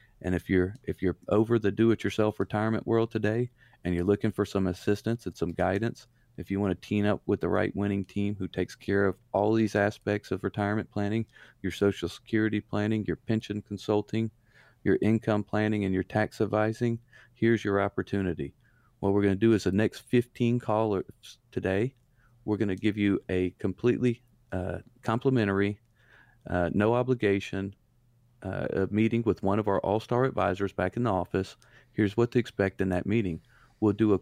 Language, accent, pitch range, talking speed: English, American, 100-115 Hz, 180 wpm